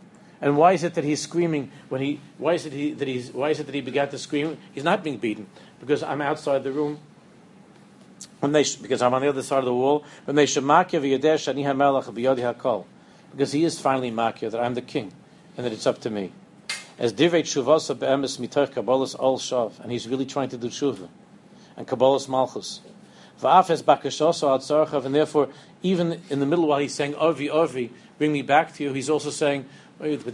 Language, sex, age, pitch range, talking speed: English, male, 50-69, 130-155 Hz, 175 wpm